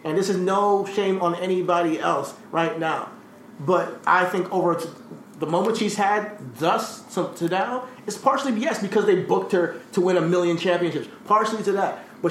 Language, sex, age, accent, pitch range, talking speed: English, male, 30-49, American, 160-200 Hz, 185 wpm